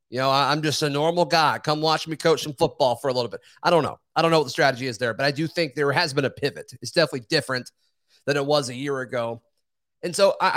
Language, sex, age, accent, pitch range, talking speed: English, male, 30-49, American, 130-165 Hz, 285 wpm